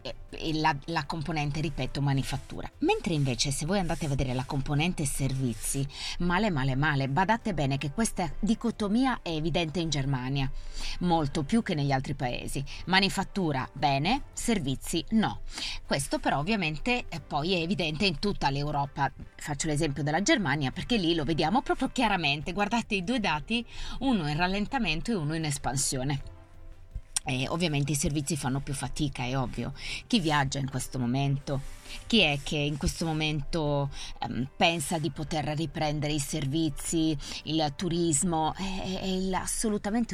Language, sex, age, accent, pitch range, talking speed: Italian, female, 30-49, native, 140-180 Hz, 150 wpm